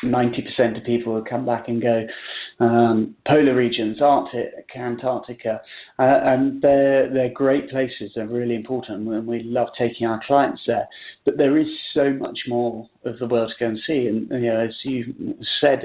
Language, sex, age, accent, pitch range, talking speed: English, male, 40-59, British, 115-130 Hz, 185 wpm